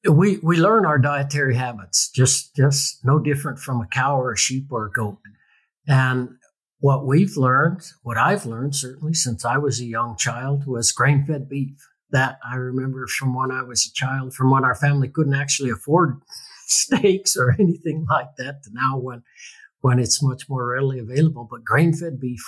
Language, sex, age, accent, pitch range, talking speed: English, male, 60-79, American, 125-150 Hz, 185 wpm